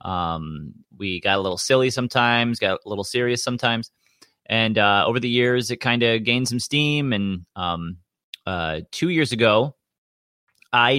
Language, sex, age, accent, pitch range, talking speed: English, male, 30-49, American, 95-120 Hz, 165 wpm